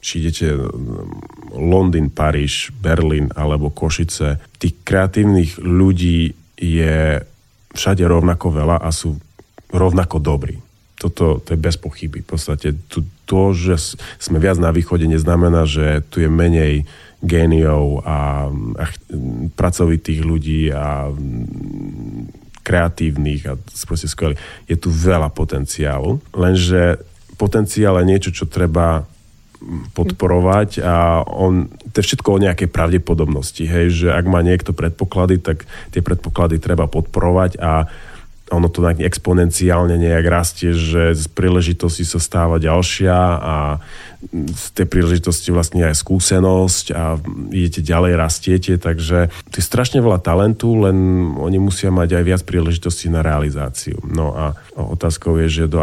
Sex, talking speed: male, 130 wpm